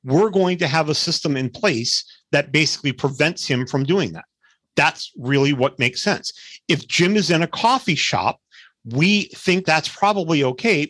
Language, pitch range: English, 135-180 Hz